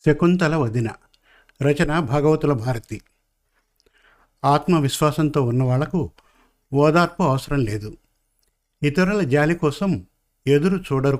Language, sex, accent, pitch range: Telugu, male, native, 135-165 Hz